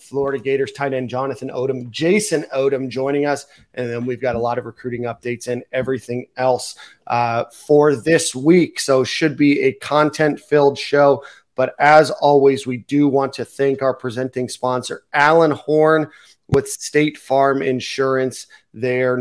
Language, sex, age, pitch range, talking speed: English, male, 30-49, 125-150 Hz, 160 wpm